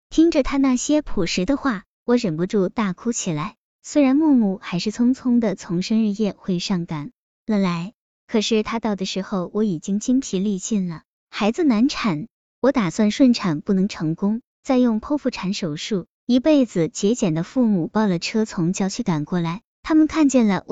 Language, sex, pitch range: Chinese, male, 185-250 Hz